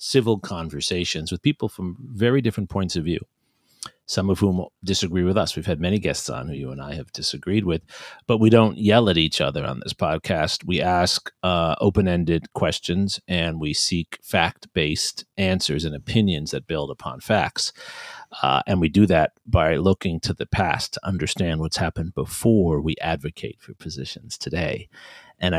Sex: male